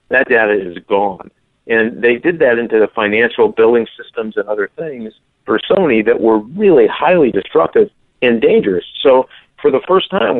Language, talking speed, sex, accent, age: English, 175 wpm, male, American, 50-69